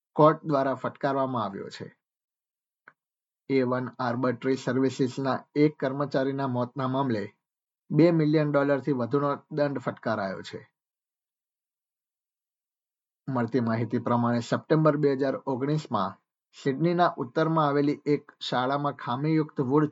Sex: male